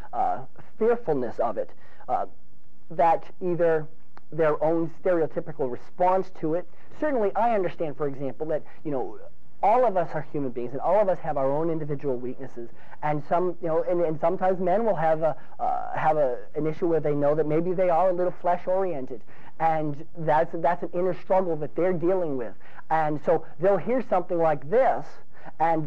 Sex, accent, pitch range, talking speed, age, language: male, American, 150-185 Hz, 190 wpm, 40-59, English